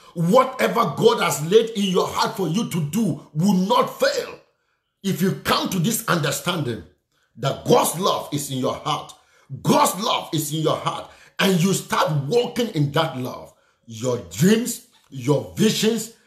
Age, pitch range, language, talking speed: 50-69, 145-200 Hz, English, 160 wpm